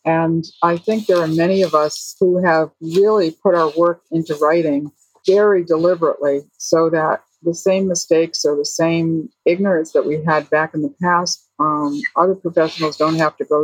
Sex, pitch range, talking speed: female, 155-175 Hz, 180 wpm